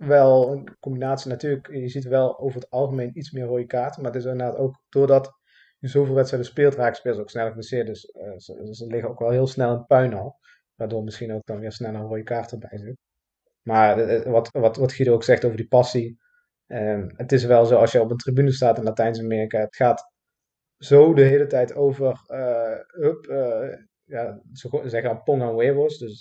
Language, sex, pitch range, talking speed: Dutch, male, 115-135 Hz, 215 wpm